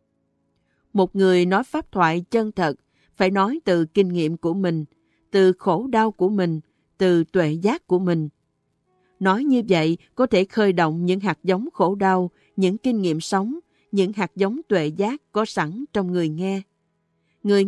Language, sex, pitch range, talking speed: Vietnamese, female, 175-210 Hz, 175 wpm